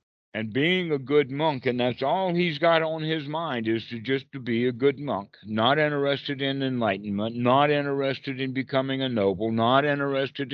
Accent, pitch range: American, 120-150 Hz